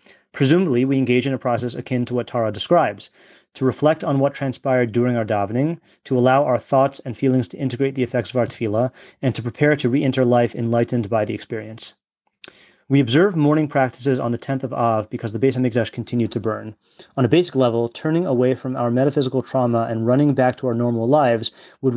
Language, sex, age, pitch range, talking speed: English, male, 30-49, 115-135 Hz, 210 wpm